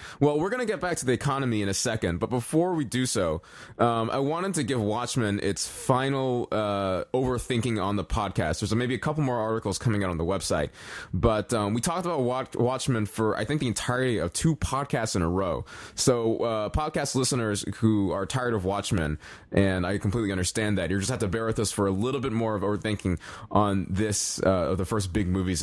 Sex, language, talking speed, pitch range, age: male, English, 220 wpm, 95-125 Hz, 20-39